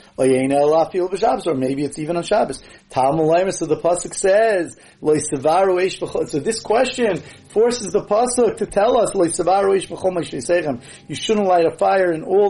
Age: 30-49